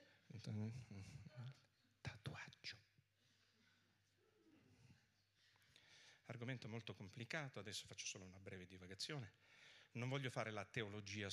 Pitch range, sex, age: 100-130 Hz, male, 50-69